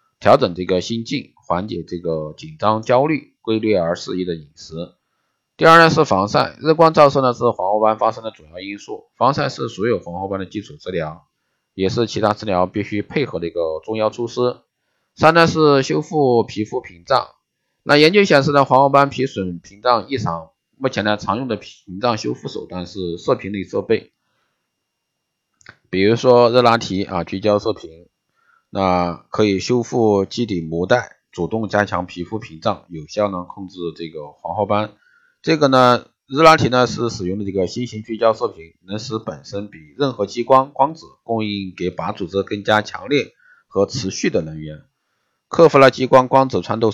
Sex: male